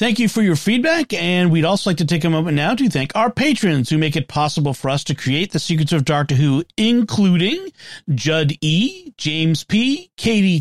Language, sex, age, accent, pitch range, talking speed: English, male, 40-59, American, 150-215 Hz, 210 wpm